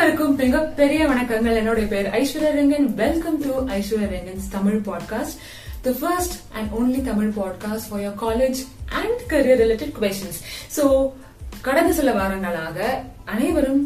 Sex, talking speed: female, 50 wpm